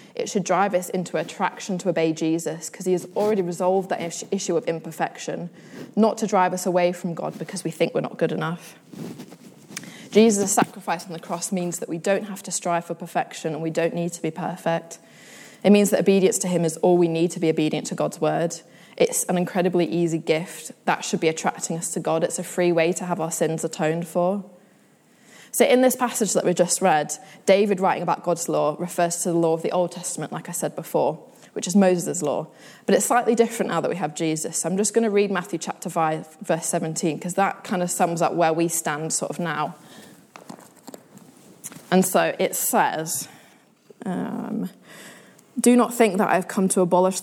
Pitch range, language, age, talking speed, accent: 165-195 Hz, English, 20-39, 210 wpm, British